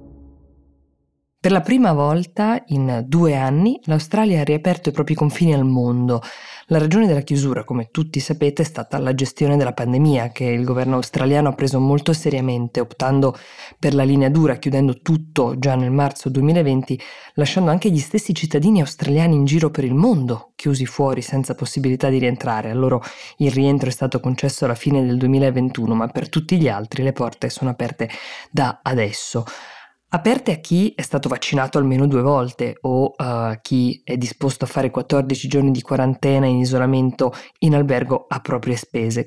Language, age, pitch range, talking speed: Italian, 20-39, 125-150 Hz, 175 wpm